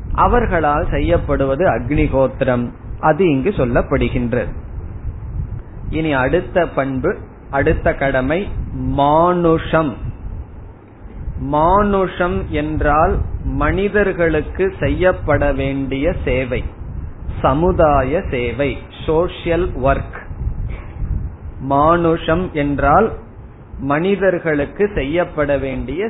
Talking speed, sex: 60 wpm, male